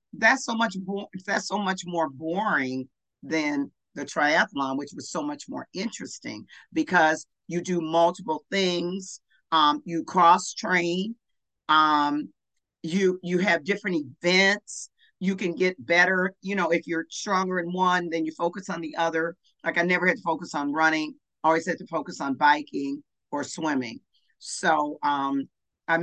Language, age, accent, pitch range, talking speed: English, 50-69, American, 155-195 Hz, 155 wpm